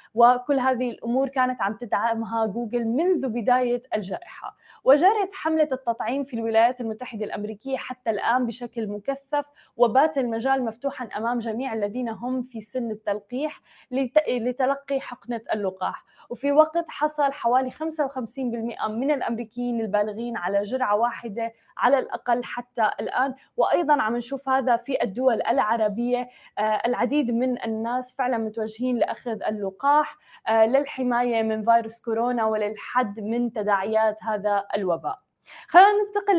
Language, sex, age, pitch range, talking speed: Arabic, female, 20-39, 230-280 Hz, 120 wpm